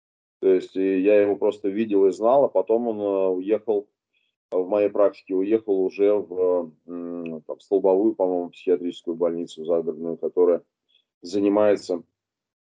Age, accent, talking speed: 20-39, native, 125 wpm